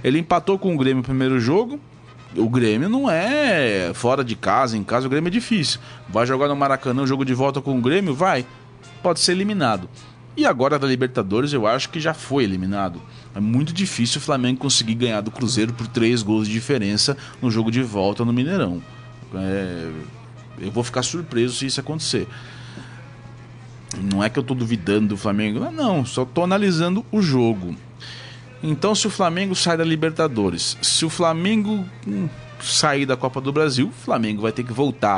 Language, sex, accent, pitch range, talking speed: Portuguese, male, Brazilian, 115-155 Hz, 190 wpm